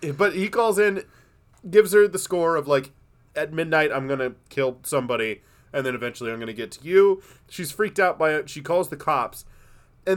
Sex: male